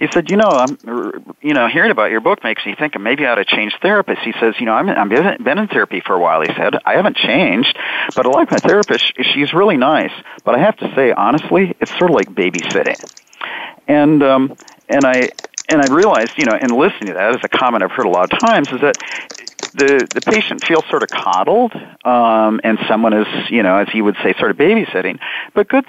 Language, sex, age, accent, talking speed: English, male, 40-59, American, 235 wpm